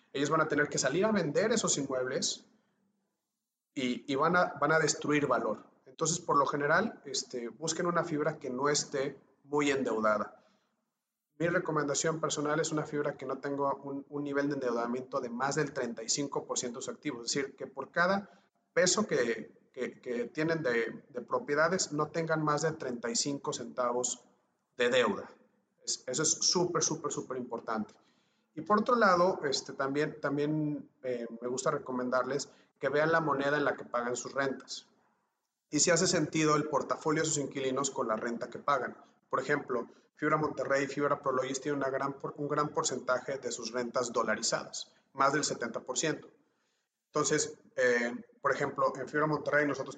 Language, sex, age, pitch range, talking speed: English, male, 40-59, 125-155 Hz, 165 wpm